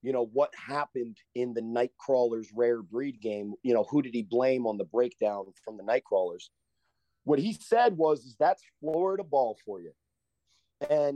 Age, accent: 30-49, American